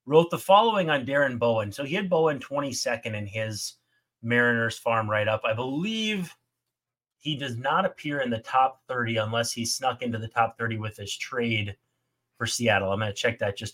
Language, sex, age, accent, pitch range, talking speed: English, male, 30-49, American, 115-145 Hz, 190 wpm